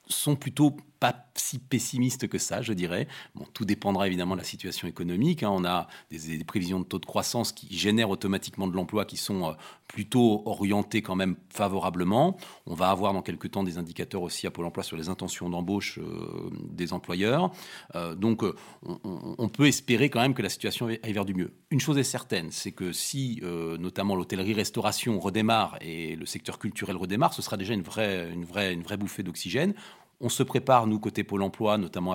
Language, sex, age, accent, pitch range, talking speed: French, male, 40-59, French, 95-120 Hz, 200 wpm